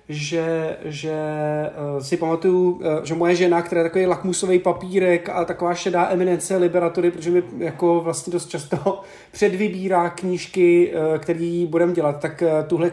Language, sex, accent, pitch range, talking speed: Czech, male, native, 165-195 Hz, 140 wpm